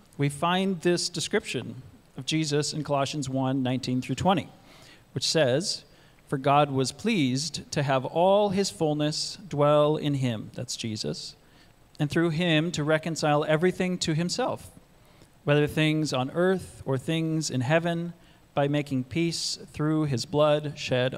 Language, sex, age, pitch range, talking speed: English, male, 40-59, 130-165 Hz, 145 wpm